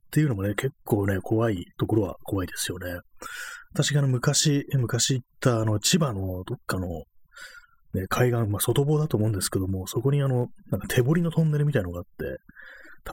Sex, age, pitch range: male, 30-49, 100-130 Hz